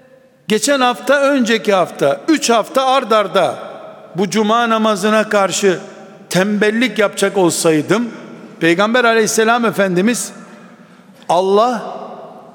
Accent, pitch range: native, 195-235 Hz